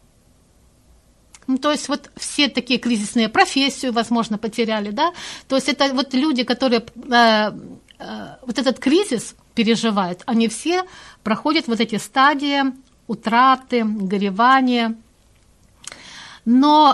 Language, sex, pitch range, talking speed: Russian, female, 215-265 Hz, 110 wpm